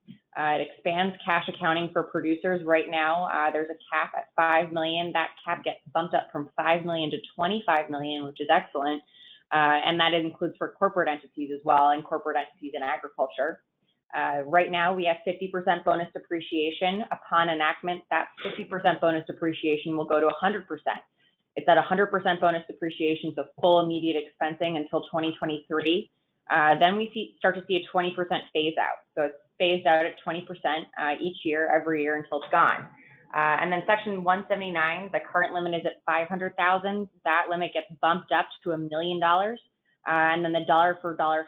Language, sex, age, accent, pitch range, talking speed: English, female, 20-39, American, 155-180 Hz, 180 wpm